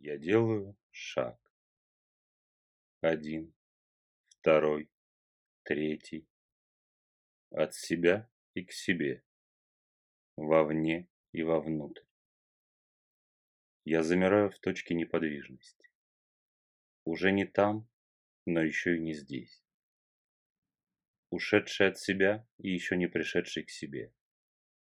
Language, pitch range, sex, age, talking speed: Russian, 75-100 Hz, male, 30-49, 85 wpm